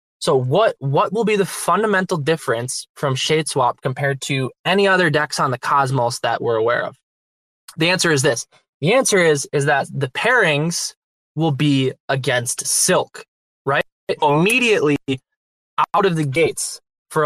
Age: 20-39